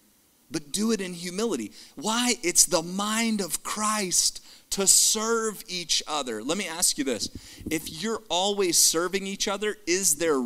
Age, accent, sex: 40-59, American, male